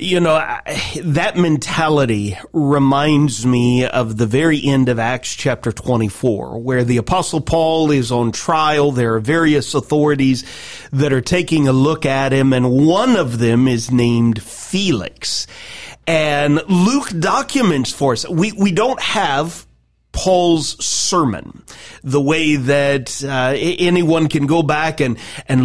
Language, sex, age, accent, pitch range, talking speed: English, male, 40-59, American, 130-170 Hz, 140 wpm